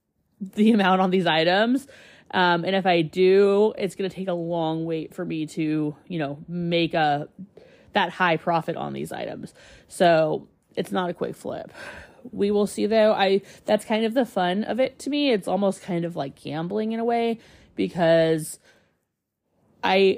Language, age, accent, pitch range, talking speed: English, 30-49, American, 165-215 Hz, 180 wpm